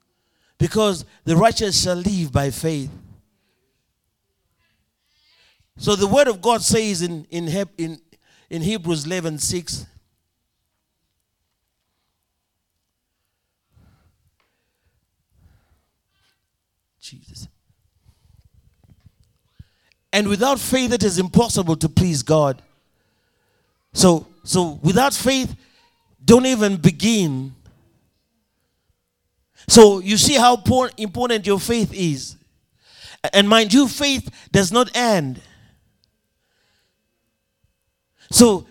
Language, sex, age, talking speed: English, male, 50-69, 80 wpm